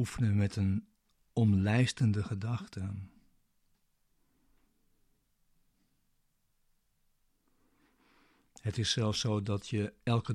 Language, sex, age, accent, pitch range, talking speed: Dutch, male, 50-69, Dutch, 100-115 Hz, 65 wpm